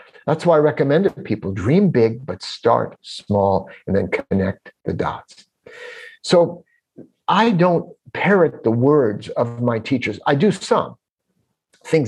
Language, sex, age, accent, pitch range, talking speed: English, male, 50-69, American, 110-160 Hz, 150 wpm